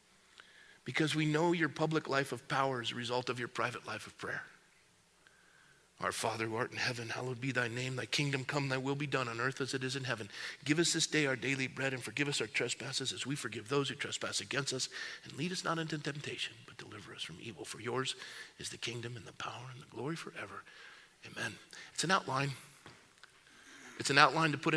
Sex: male